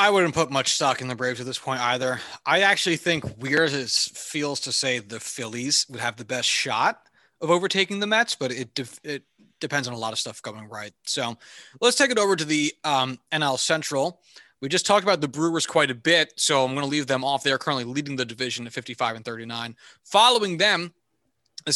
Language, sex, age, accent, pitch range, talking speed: English, male, 20-39, American, 130-165 Hz, 225 wpm